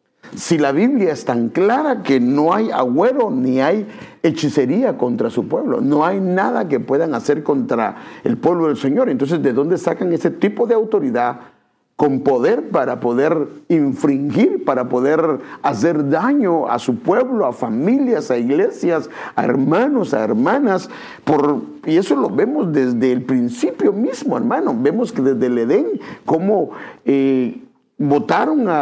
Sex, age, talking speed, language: male, 50-69, 150 wpm, English